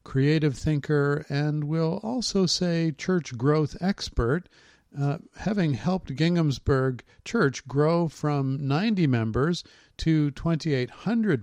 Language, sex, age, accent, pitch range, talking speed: English, male, 50-69, American, 125-160 Hz, 105 wpm